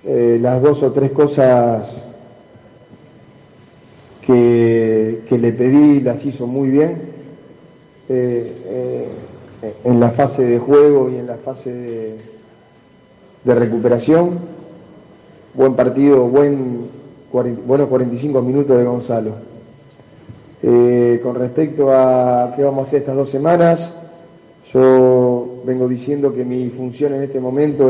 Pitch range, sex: 120-140 Hz, male